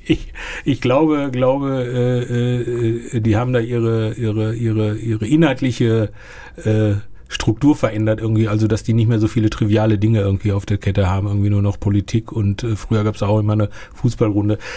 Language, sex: German, male